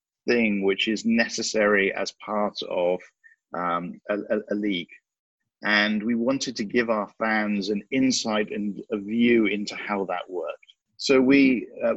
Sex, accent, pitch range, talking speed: male, British, 105-125 Hz, 150 wpm